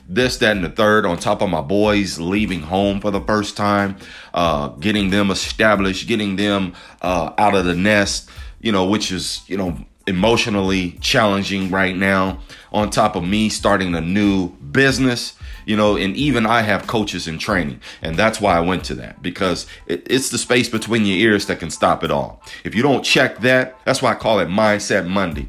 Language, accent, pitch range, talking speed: English, American, 100-130 Hz, 200 wpm